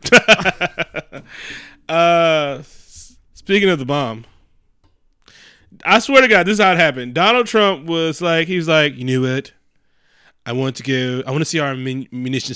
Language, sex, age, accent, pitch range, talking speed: English, male, 20-39, American, 120-155 Hz, 160 wpm